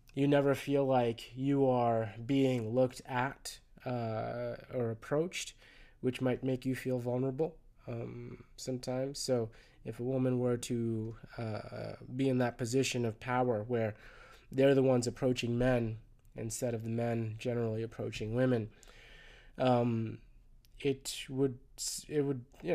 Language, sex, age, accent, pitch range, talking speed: English, male, 20-39, American, 115-130 Hz, 135 wpm